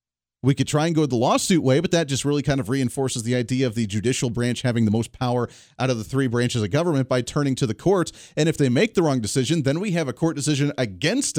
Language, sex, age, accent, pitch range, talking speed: English, male, 40-59, American, 120-150 Hz, 270 wpm